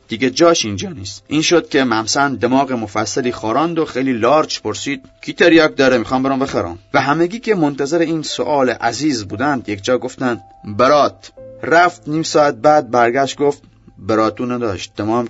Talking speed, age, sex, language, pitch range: 155 wpm, 30-49, male, Persian, 110-145 Hz